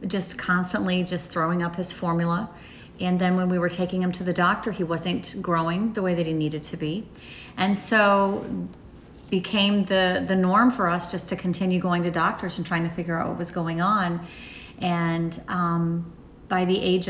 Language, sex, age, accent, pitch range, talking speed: English, female, 40-59, American, 165-190 Hz, 195 wpm